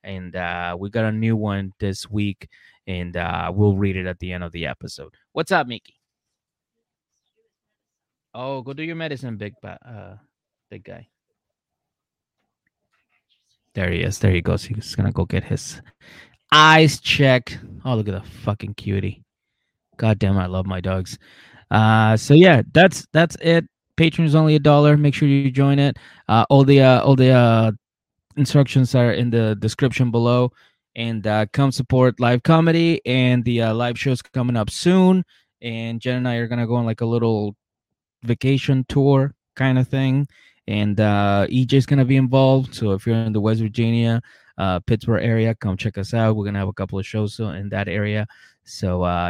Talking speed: 185 wpm